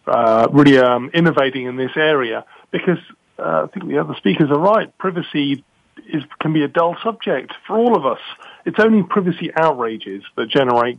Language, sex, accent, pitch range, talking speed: English, male, British, 130-160 Hz, 180 wpm